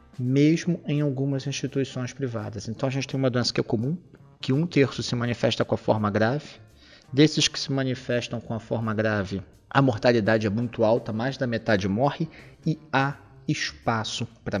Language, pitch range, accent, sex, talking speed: Portuguese, 115-155 Hz, Brazilian, male, 180 wpm